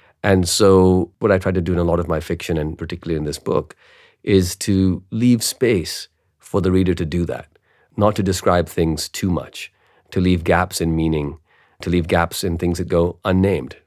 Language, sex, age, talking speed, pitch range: English, male, 40-59, 205 wpm, 80-95 Hz